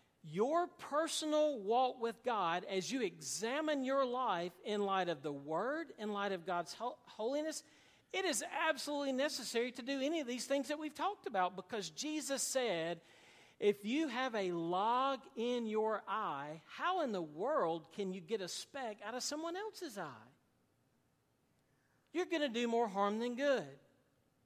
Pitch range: 195-275 Hz